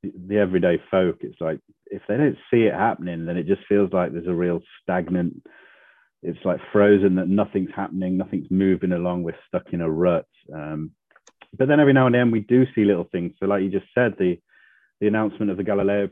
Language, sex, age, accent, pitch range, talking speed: English, male, 30-49, British, 90-105 Hz, 210 wpm